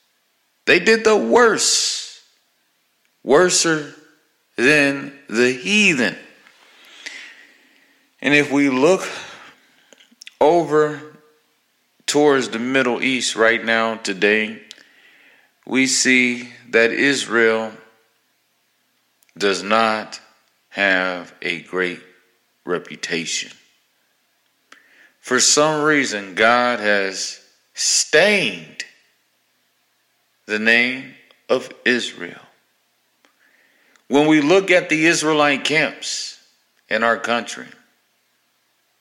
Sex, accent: male, American